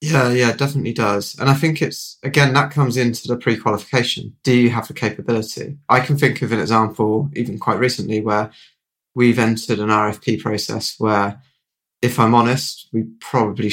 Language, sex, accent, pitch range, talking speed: English, male, British, 115-130 Hz, 180 wpm